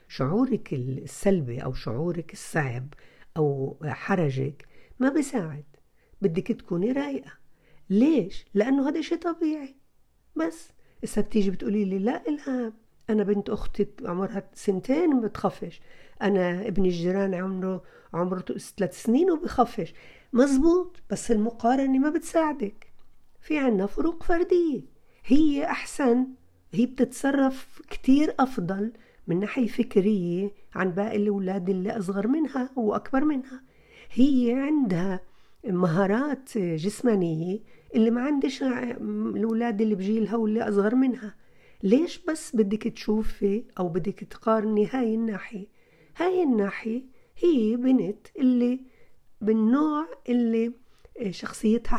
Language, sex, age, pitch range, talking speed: Arabic, female, 50-69, 195-265 Hz, 110 wpm